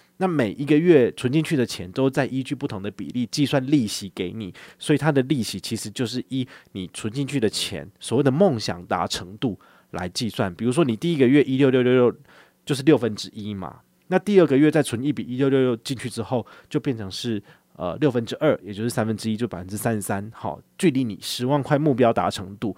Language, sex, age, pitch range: Chinese, male, 30-49, 105-145 Hz